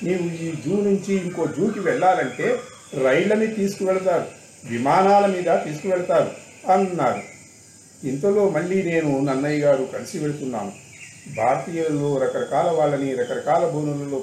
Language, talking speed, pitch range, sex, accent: Telugu, 105 wpm, 145-190 Hz, male, native